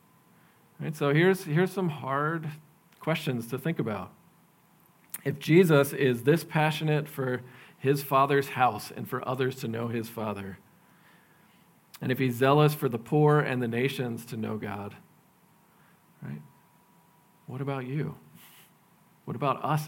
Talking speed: 140 wpm